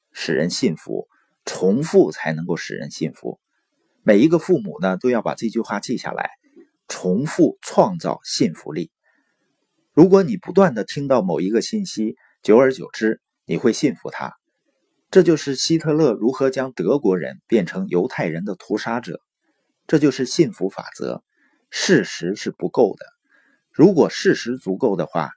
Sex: male